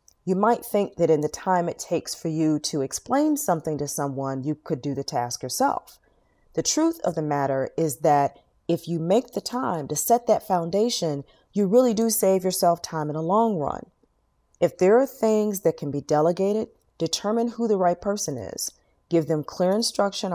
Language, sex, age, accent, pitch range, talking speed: English, female, 40-59, American, 155-210 Hz, 195 wpm